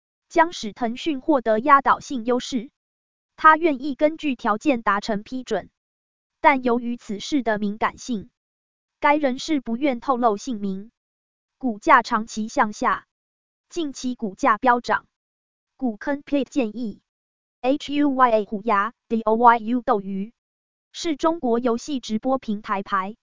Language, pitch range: Chinese, 220-280 Hz